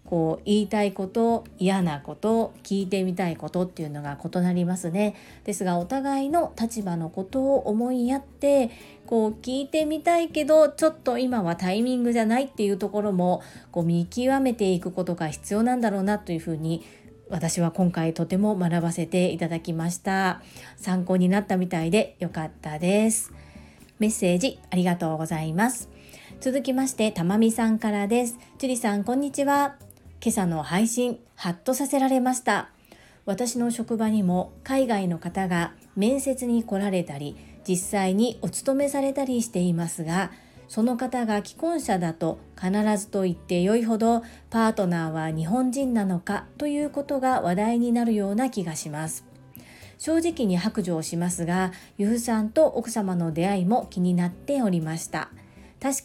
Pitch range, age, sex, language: 175-245 Hz, 40-59, female, Japanese